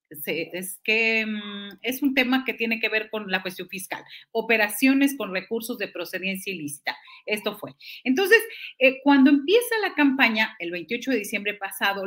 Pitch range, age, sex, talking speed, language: 200-275 Hz, 40-59, female, 160 wpm, Spanish